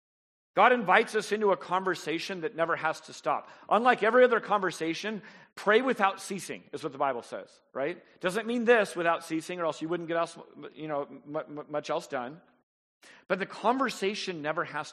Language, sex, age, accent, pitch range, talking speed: English, male, 40-59, American, 140-190 Hz, 170 wpm